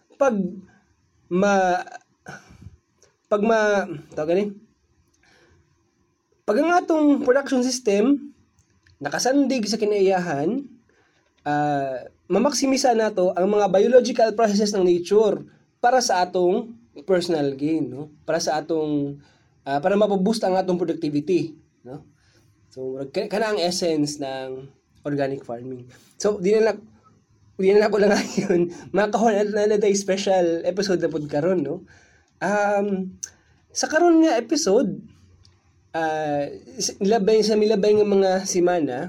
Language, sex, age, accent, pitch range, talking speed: Filipino, male, 20-39, native, 150-210 Hz, 110 wpm